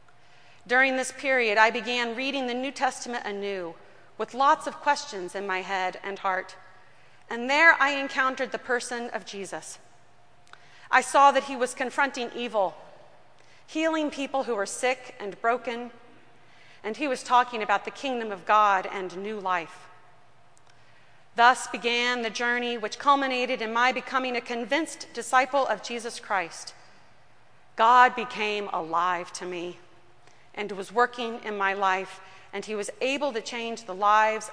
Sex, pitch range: female, 195-260 Hz